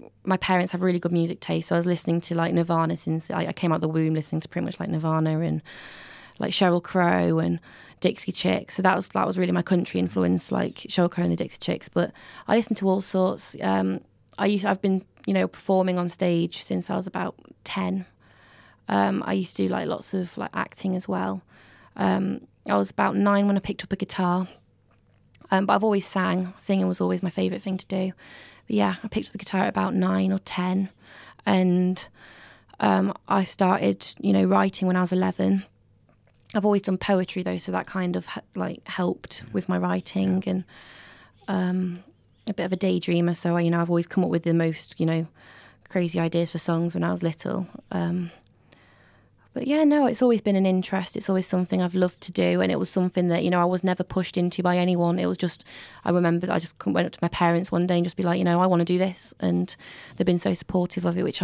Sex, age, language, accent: female, 20-39, English, British